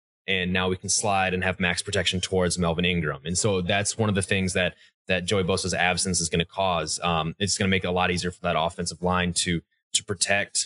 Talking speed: 240 wpm